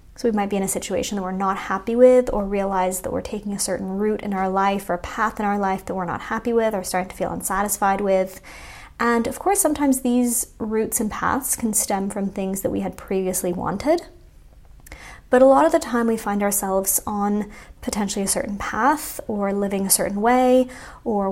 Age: 20-39